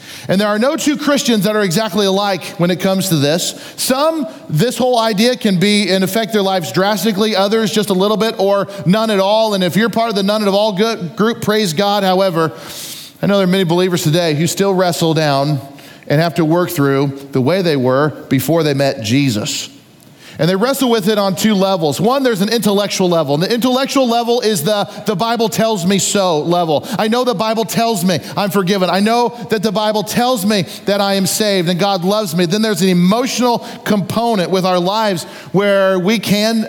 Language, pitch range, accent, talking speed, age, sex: English, 180-225 Hz, American, 215 wpm, 40-59, male